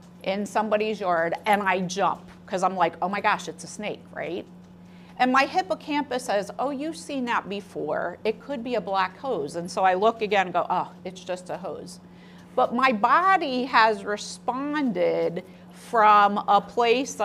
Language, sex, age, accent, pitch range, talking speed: English, female, 40-59, American, 185-240 Hz, 175 wpm